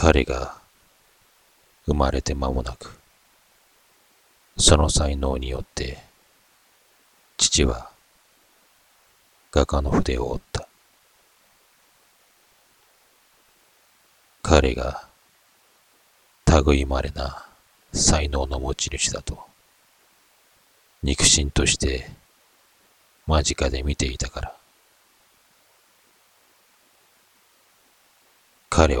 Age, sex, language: 40-59, male, Japanese